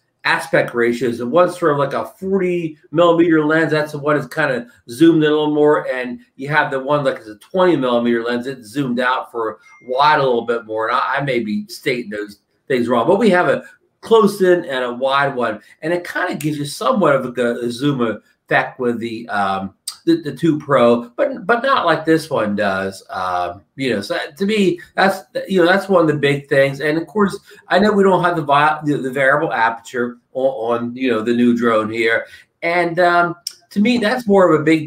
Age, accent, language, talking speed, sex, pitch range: 40-59, American, English, 230 wpm, male, 120-175 Hz